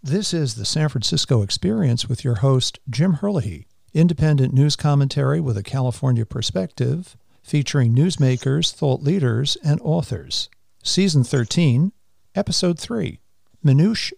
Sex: male